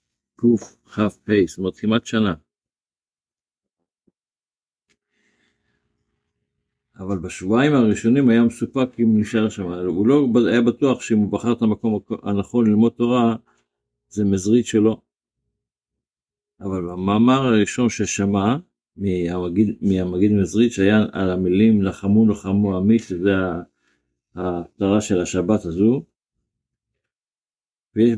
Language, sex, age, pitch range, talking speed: Hebrew, male, 50-69, 95-115 Hz, 100 wpm